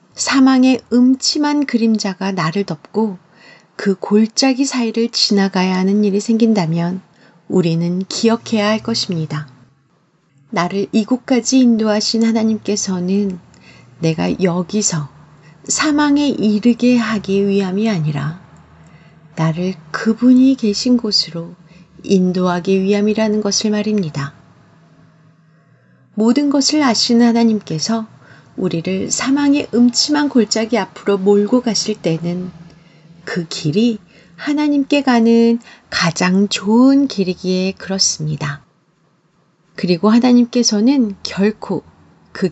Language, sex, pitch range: Korean, female, 170-230 Hz